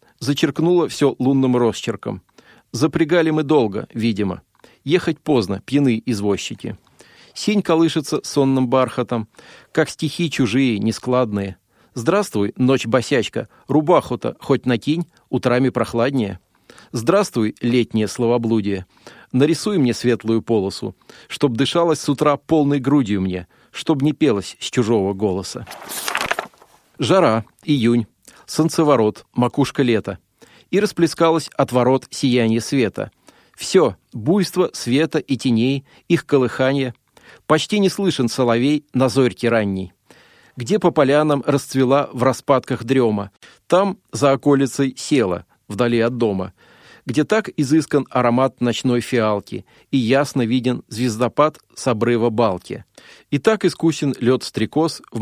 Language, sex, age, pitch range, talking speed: Russian, male, 40-59, 115-150 Hz, 115 wpm